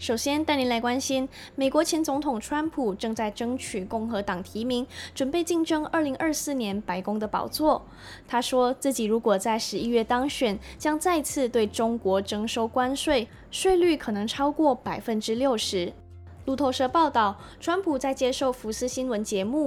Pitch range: 210-275 Hz